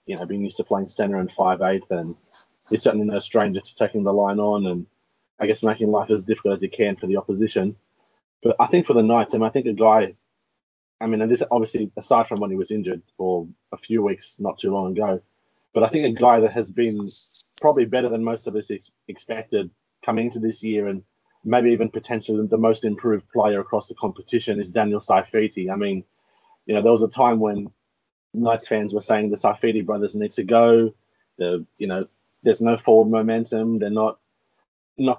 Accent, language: Australian, English